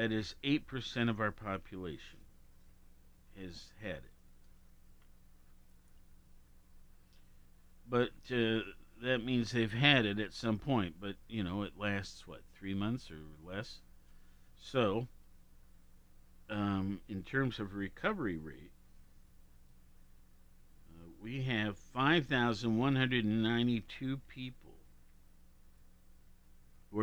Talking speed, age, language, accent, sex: 95 wpm, 50-69, English, American, male